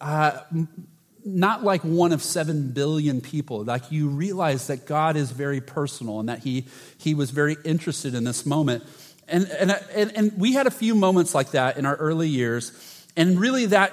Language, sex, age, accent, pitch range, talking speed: English, male, 30-49, American, 140-185 Hz, 190 wpm